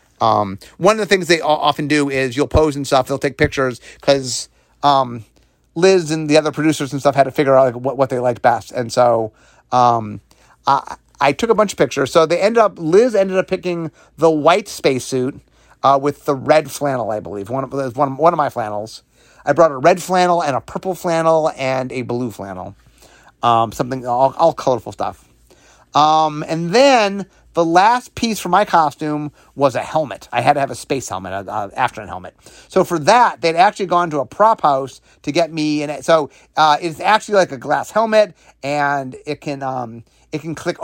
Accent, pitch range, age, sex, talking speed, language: American, 130-175 Hz, 30-49, male, 200 wpm, English